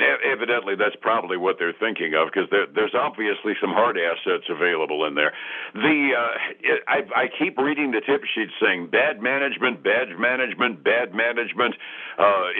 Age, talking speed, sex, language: 60-79, 160 wpm, male, English